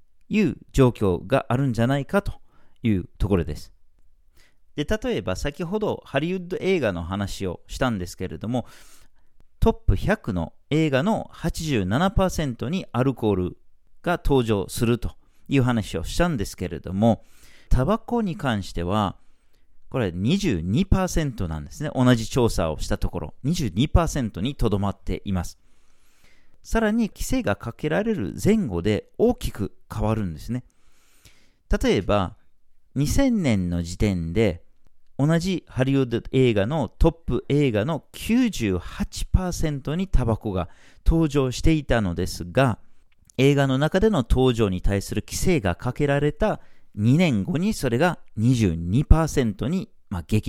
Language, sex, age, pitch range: Japanese, male, 40-59, 95-145 Hz